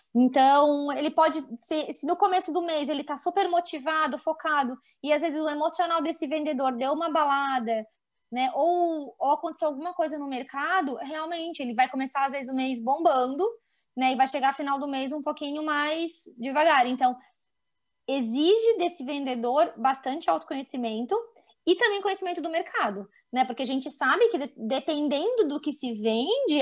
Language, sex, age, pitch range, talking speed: Portuguese, female, 20-39, 255-335 Hz, 165 wpm